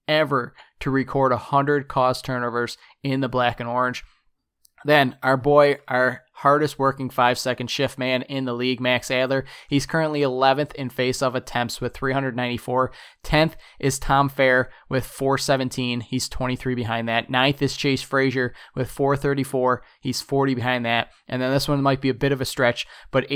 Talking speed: 170 wpm